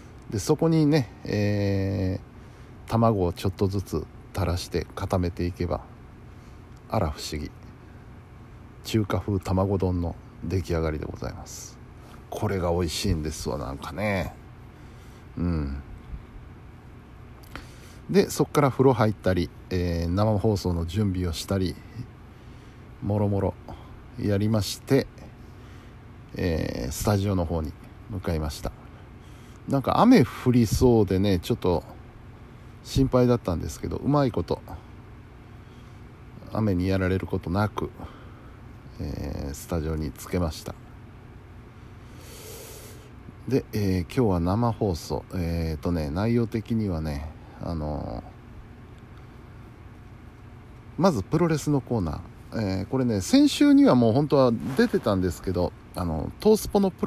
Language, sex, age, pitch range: Japanese, male, 60-79, 90-120 Hz